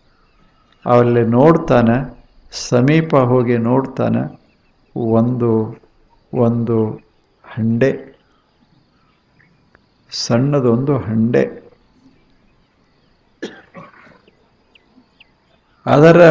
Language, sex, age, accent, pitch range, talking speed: Kannada, male, 60-79, native, 120-150 Hz, 40 wpm